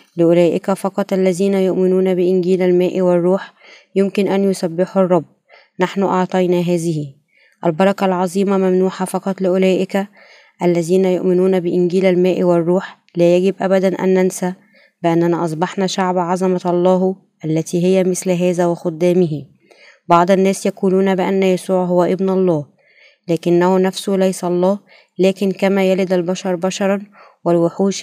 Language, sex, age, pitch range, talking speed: Arabic, female, 20-39, 180-190 Hz, 120 wpm